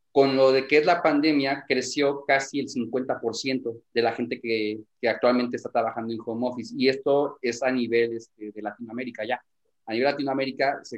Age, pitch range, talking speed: 30-49, 120-145 Hz, 190 wpm